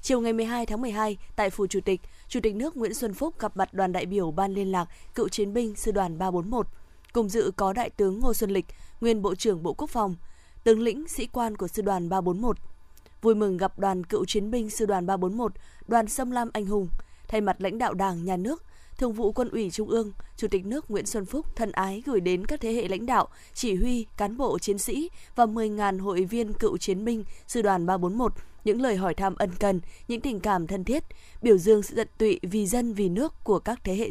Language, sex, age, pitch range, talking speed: Vietnamese, female, 20-39, 190-230 Hz, 235 wpm